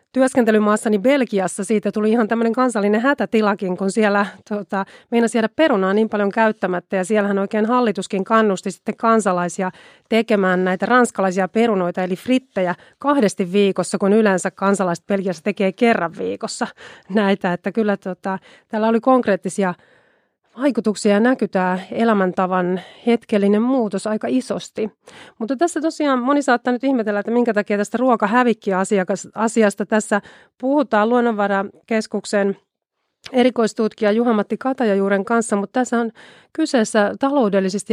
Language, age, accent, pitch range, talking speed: Finnish, 30-49, native, 195-235 Hz, 120 wpm